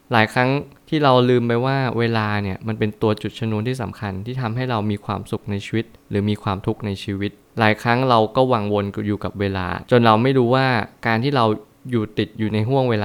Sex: male